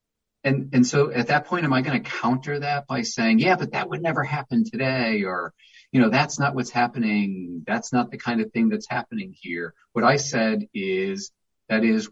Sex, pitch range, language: male, 110-180 Hz, English